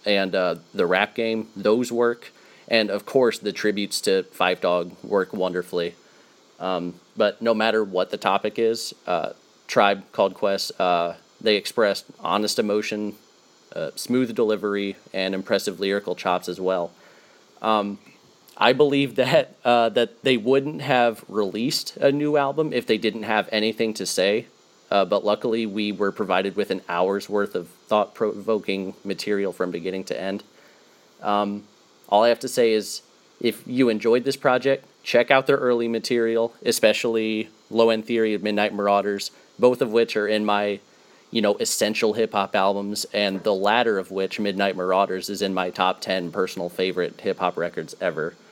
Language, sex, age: English, male, 30-49